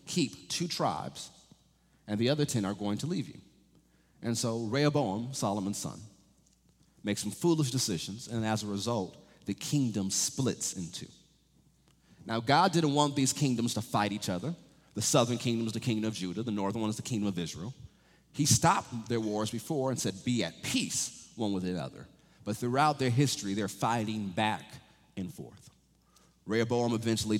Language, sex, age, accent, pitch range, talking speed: English, male, 40-59, American, 100-130 Hz, 175 wpm